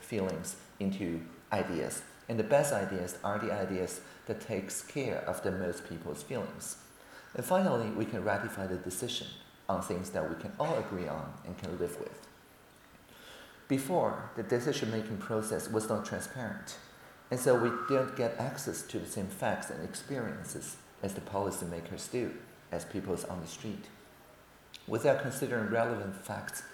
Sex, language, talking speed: male, French, 155 wpm